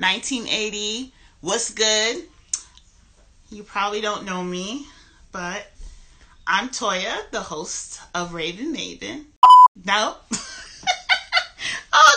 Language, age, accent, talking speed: English, 30-49, American, 95 wpm